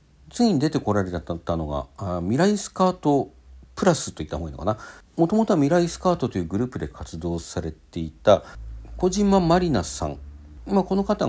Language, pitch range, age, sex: Japanese, 75-115 Hz, 50-69, male